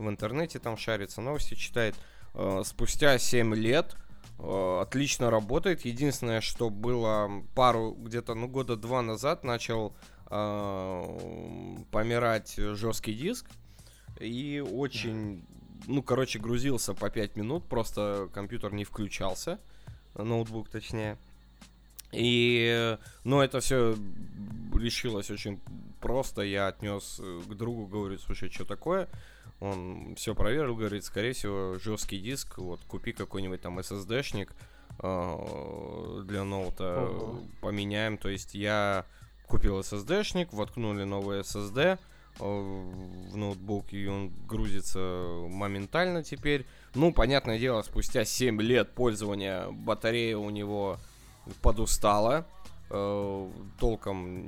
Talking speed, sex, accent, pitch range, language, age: 105 wpm, male, native, 100-120 Hz, Russian, 20-39